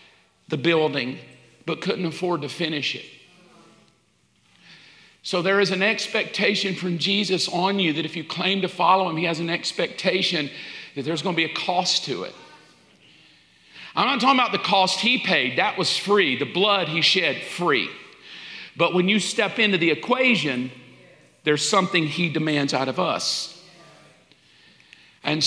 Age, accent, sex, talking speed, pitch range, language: 50-69, American, male, 160 wpm, 145-185 Hz, English